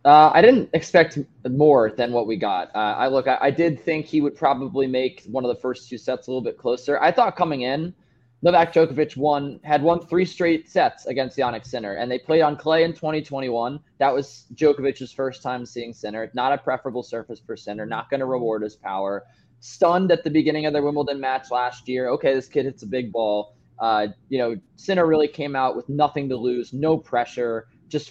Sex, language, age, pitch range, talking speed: male, English, 20-39, 125-155 Hz, 215 wpm